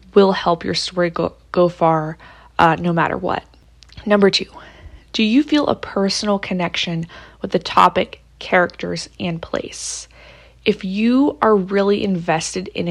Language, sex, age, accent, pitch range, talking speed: English, female, 20-39, American, 170-200 Hz, 145 wpm